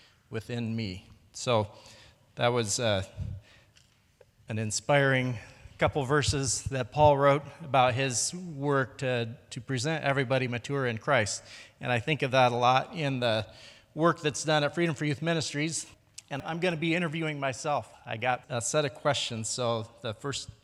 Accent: American